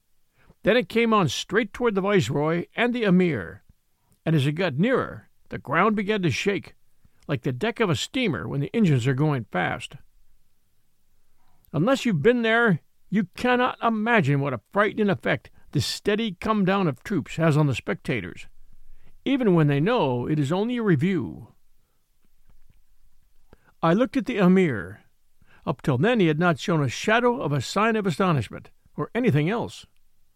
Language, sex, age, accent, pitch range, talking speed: English, male, 60-79, American, 140-220 Hz, 165 wpm